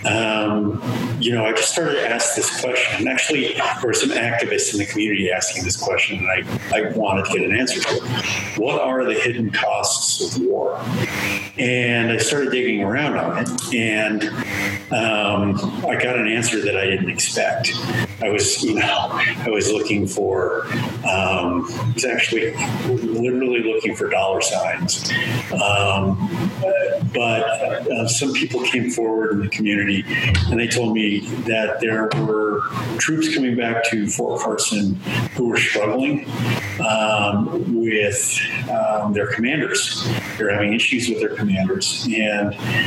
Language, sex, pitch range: English, male, 105-120 Hz